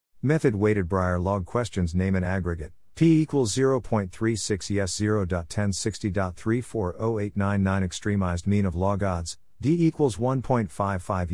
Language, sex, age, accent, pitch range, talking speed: English, male, 50-69, American, 90-105 Hz, 110 wpm